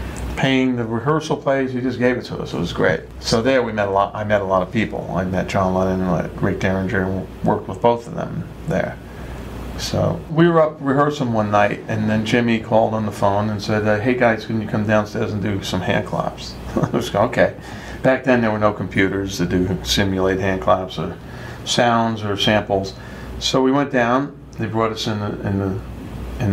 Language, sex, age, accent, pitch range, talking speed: English, male, 40-59, American, 95-125 Hz, 220 wpm